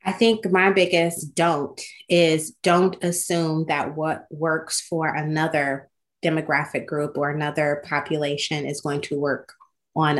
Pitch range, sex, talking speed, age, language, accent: 150-170 Hz, female, 135 wpm, 30-49, English, American